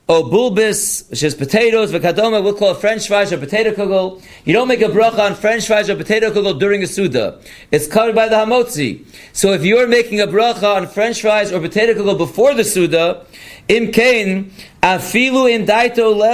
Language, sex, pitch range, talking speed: English, male, 190-225 Hz, 190 wpm